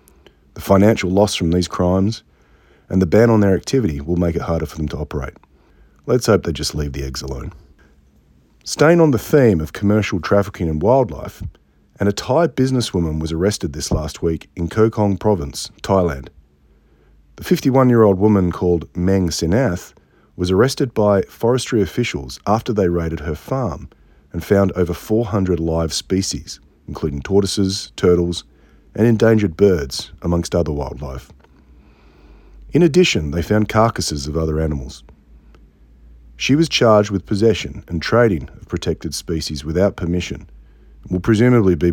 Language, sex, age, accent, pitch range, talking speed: English, male, 30-49, Australian, 75-105 Hz, 155 wpm